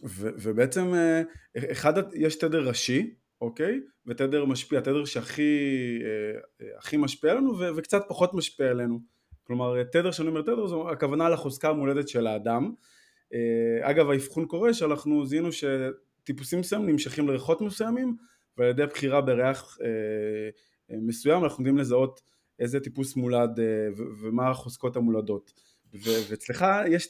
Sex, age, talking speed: male, 20-39, 125 wpm